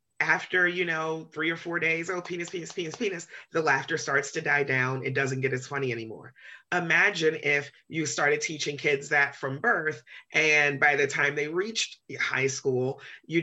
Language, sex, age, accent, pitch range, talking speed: English, female, 30-49, American, 145-205 Hz, 190 wpm